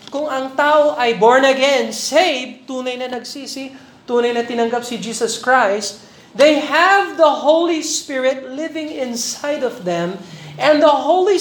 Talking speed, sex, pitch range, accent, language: 145 wpm, male, 210-315 Hz, native, Filipino